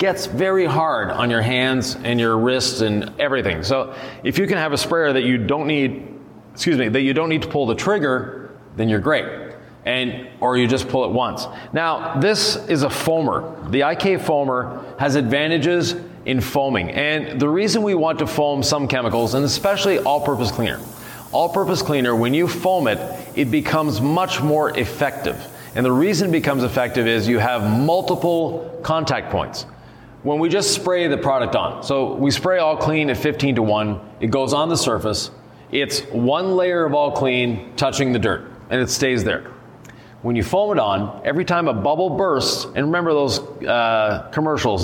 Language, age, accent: English, 30-49, American